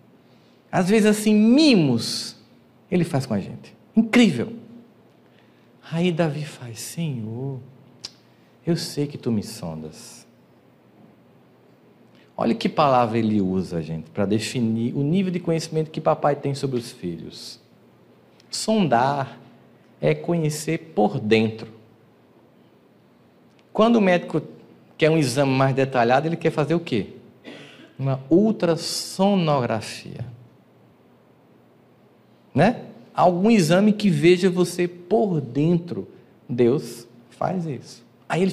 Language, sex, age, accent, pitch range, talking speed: Portuguese, male, 50-69, Brazilian, 120-175 Hz, 110 wpm